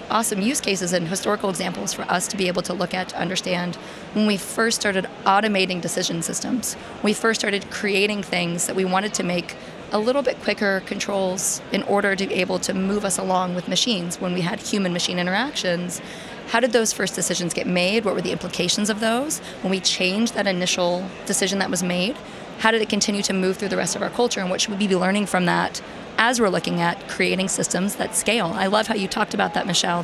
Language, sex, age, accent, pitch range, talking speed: English, female, 30-49, American, 180-215 Hz, 225 wpm